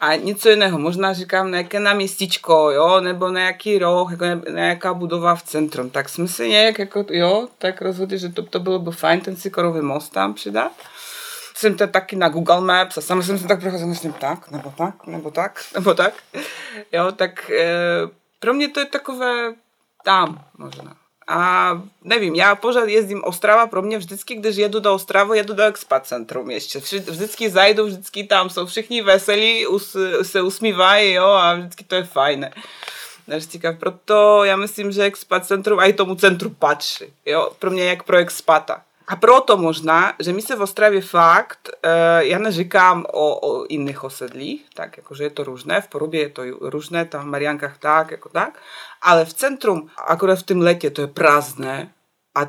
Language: Czech